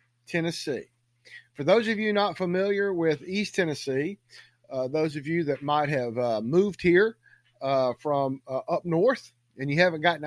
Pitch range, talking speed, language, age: 130-180 Hz, 170 wpm, English, 50-69